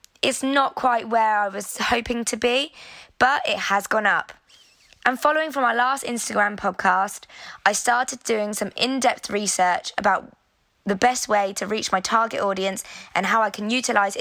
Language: English